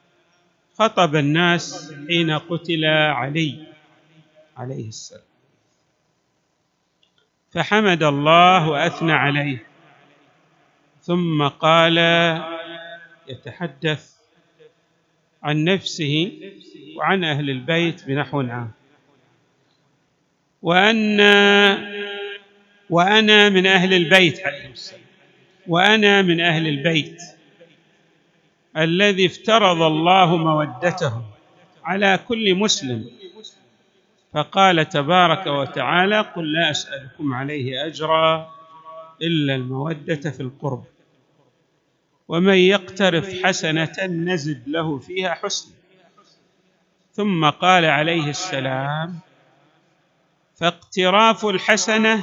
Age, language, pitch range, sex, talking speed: 50-69, Arabic, 150-185 Hz, male, 75 wpm